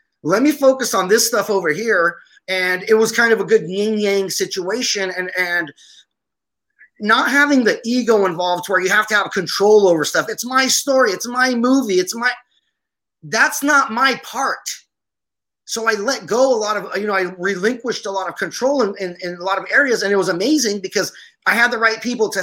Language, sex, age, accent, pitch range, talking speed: English, male, 30-49, American, 195-260 Hz, 210 wpm